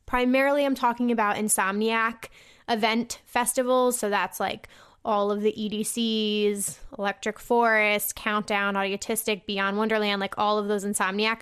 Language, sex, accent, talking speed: English, female, American, 130 wpm